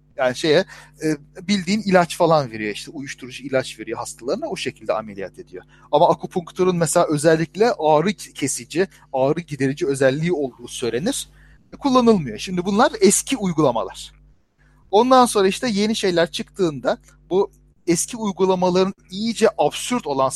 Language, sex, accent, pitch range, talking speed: Turkish, male, native, 145-210 Hz, 125 wpm